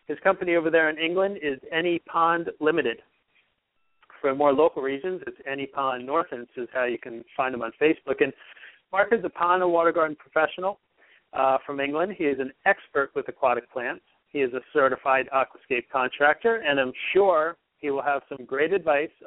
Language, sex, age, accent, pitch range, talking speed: English, male, 40-59, American, 135-180 Hz, 190 wpm